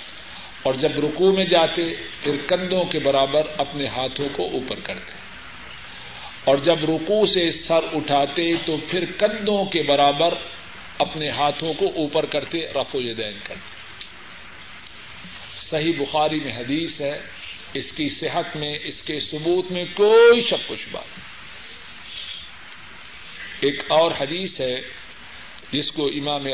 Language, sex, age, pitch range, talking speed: Urdu, male, 50-69, 135-160 Hz, 125 wpm